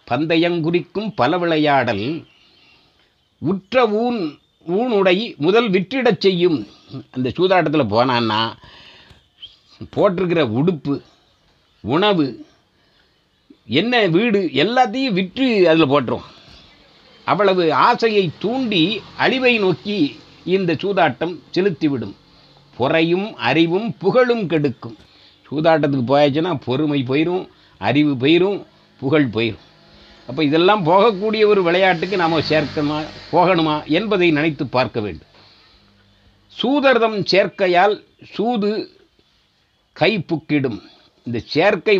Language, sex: Tamil, male